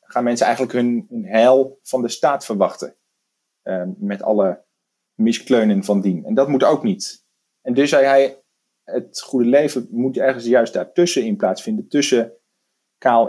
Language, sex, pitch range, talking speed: Dutch, male, 110-135 Hz, 165 wpm